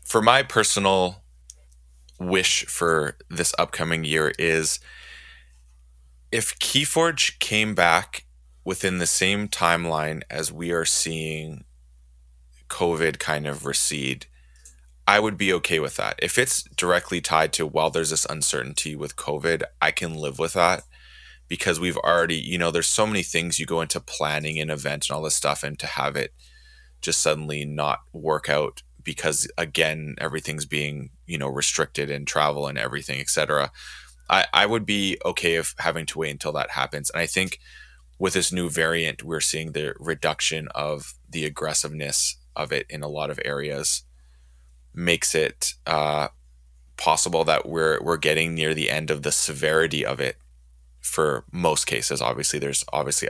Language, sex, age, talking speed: English, male, 20-39, 160 wpm